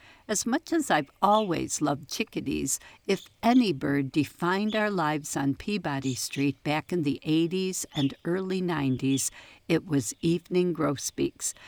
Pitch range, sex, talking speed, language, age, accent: 150-200 Hz, female, 140 wpm, English, 60-79, American